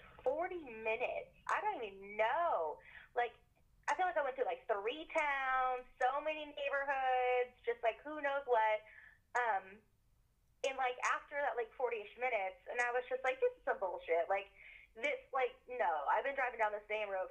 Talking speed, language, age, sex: 180 wpm, English, 20-39, female